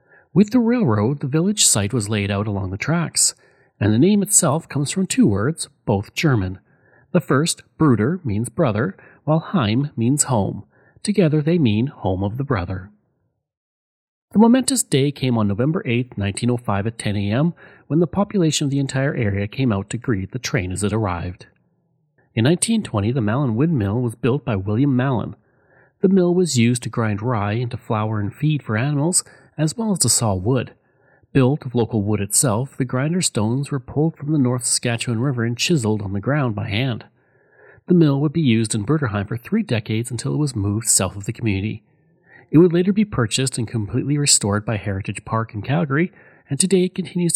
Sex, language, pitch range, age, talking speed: male, English, 110-155 Hz, 40-59, 190 wpm